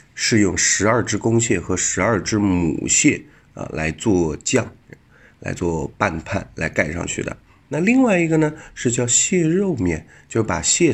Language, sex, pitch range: Chinese, male, 85-115 Hz